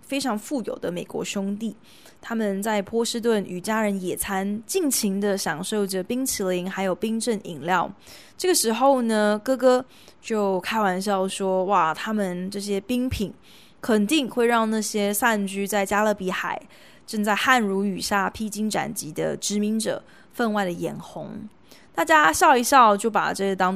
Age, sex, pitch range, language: 20-39, female, 195-250 Hz, Chinese